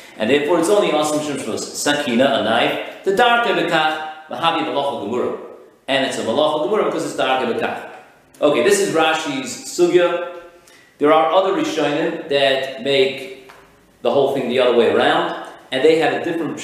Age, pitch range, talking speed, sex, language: 40-59, 125-150 Hz, 170 wpm, male, English